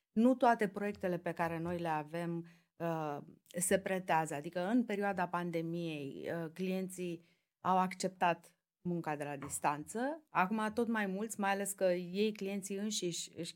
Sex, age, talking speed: female, 30-49, 140 wpm